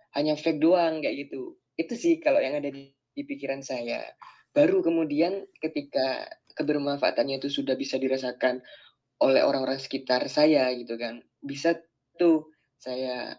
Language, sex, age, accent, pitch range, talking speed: Indonesian, female, 20-39, native, 130-175 Hz, 140 wpm